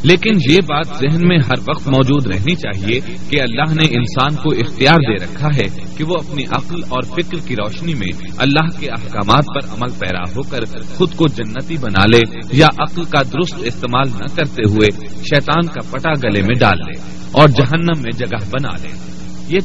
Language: Urdu